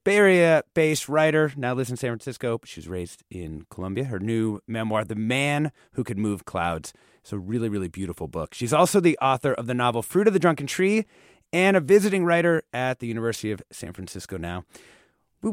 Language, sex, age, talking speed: English, male, 30-49, 195 wpm